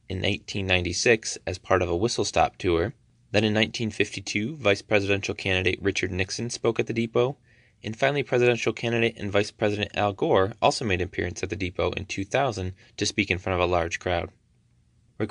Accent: American